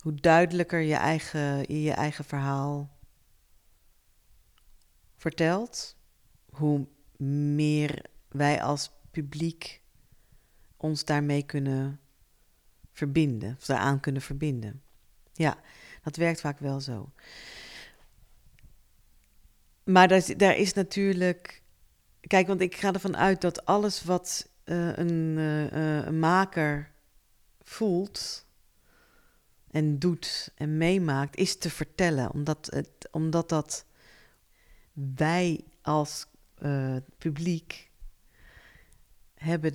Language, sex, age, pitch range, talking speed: Dutch, female, 40-59, 145-175 Hz, 90 wpm